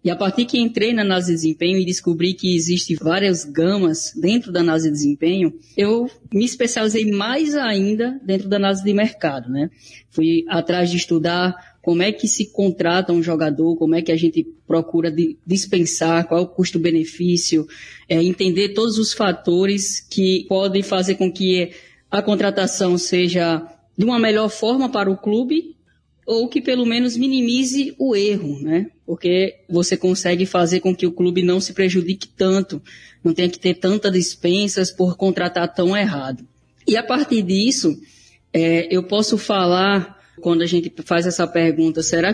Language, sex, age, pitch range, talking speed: Portuguese, female, 10-29, 170-205 Hz, 165 wpm